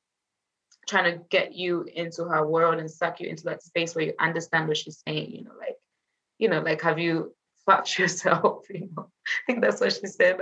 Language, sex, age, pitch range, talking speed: English, female, 20-39, 165-225 Hz, 215 wpm